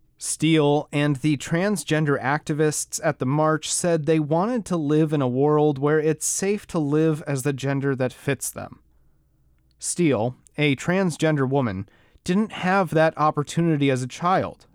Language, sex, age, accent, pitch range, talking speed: English, male, 30-49, American, 140-165 Hz, 155 wpm